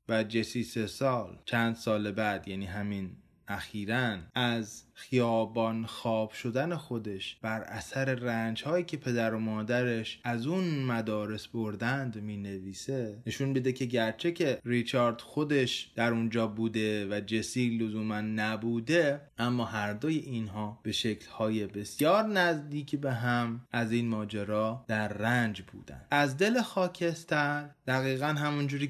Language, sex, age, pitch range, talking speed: Persian, male, 20-39, 110-135 Hz, 125 wpm